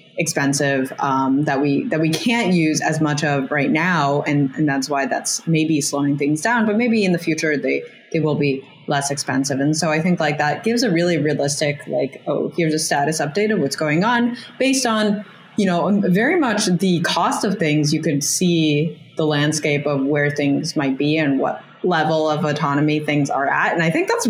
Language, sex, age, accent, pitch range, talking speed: English, female, 20-39, American, 145-175 Hz, 210 wpm